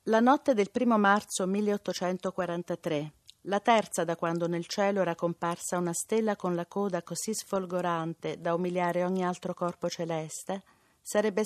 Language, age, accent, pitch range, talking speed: Italian, 50-69, native, 170-210 Hz, 145 wpm